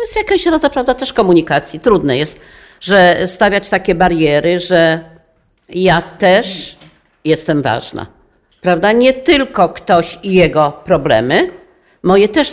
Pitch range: 155-220 Hz